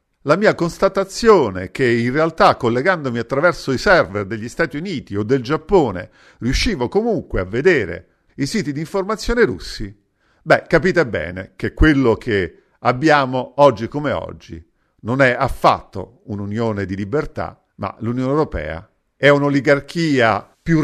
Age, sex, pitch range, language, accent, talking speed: 50-69, male, 100-155 Hz, Italian, native, 135 wpm